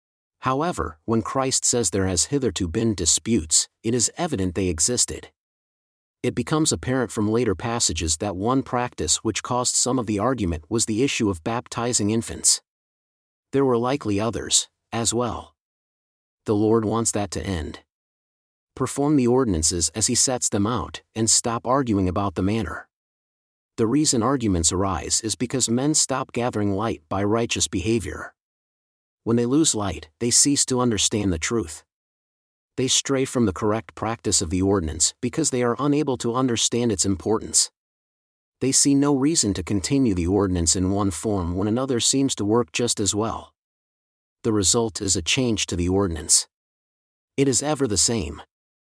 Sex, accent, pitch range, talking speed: male, American, 95-125 Hz, 165 wpm